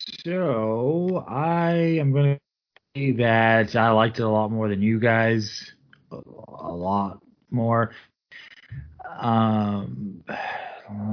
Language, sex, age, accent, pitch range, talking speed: English, male, 30-49, American, 105-130 Hz, 100 wpm